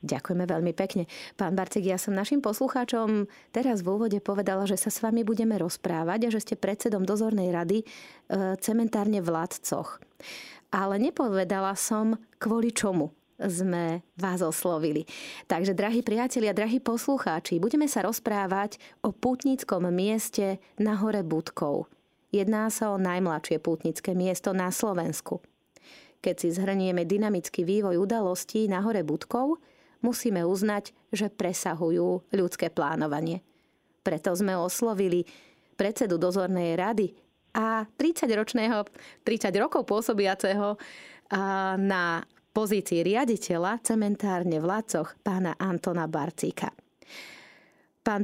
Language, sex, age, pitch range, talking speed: Slovak, female, 30-49, 180-220 Hz, 115 wpm